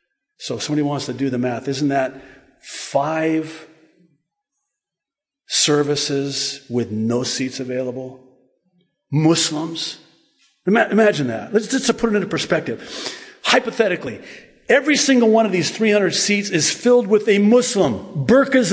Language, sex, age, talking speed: English, male, 50-69, 130 wpm